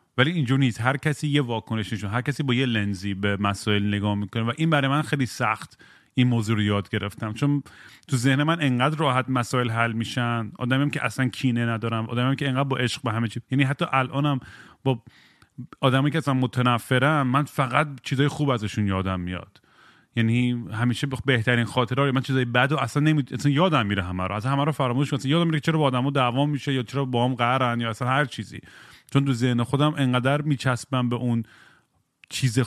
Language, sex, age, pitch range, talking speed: Persian, male, 30-49, 115-140 Hz, 190 wpm